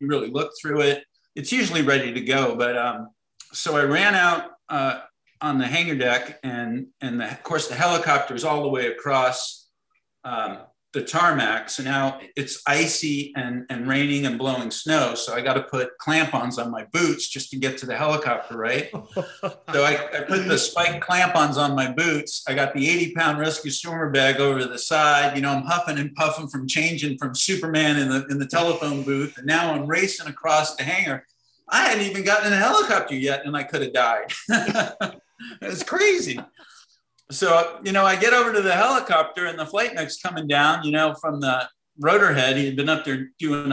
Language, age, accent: English, 50-69, American